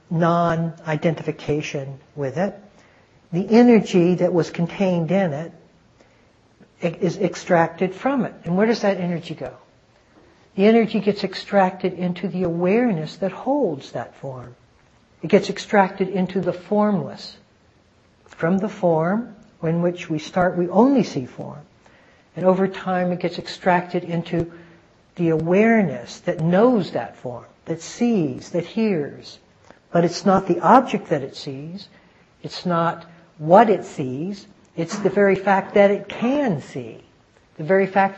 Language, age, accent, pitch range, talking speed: English, 60-79, American, 165-205 Hz, 140 wpm